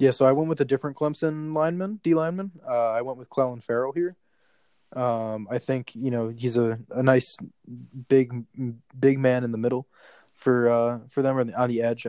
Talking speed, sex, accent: 210 wpm, male, American